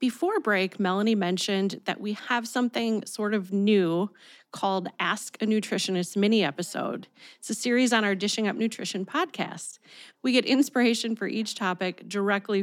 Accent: American